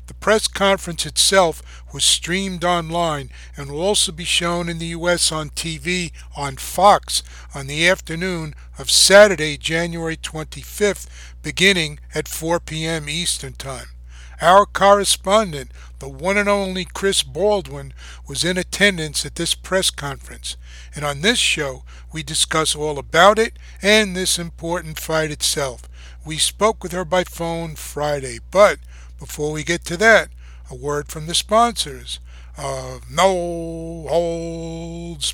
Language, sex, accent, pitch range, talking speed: English, male, American, 140-195 Hz, 140 wpm